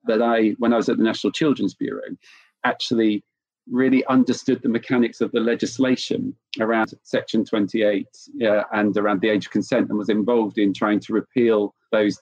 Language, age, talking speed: English, 40-59, 175 wpm